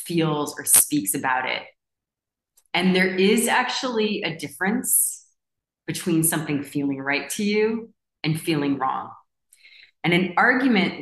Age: 30-49